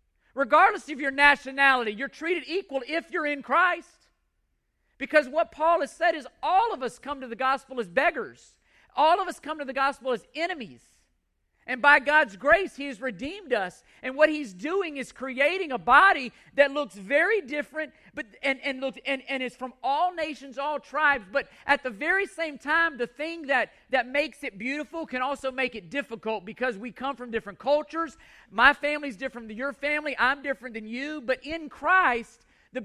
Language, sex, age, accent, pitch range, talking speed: English, male, 40-59, American, 235-295 Hz, 190 wpm